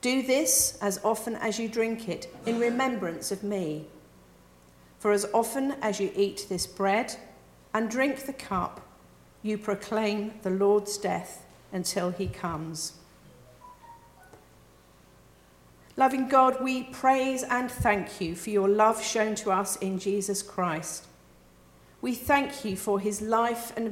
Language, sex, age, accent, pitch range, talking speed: English, female, 50-69, British, 180-230 Hz, 140 wpm